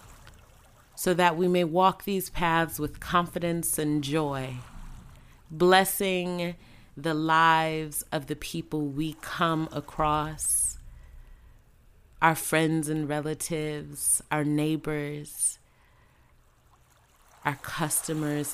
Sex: female